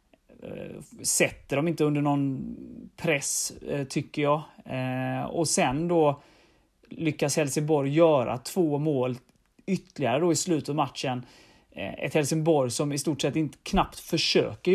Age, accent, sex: 30-49, native, male